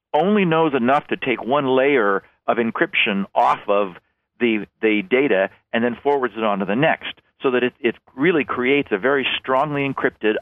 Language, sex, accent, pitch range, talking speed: English, male, American, 110-145 Hz, 185 wpm